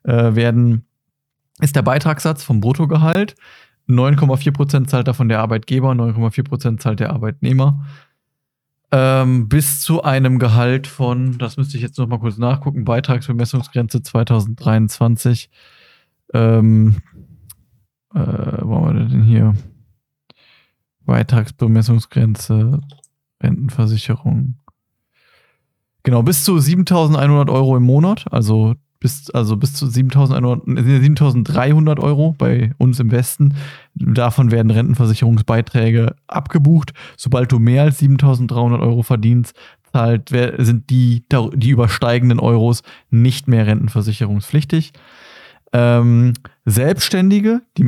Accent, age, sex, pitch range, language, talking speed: German, 20-39, male, 115-140 Hz, German, 100 wpm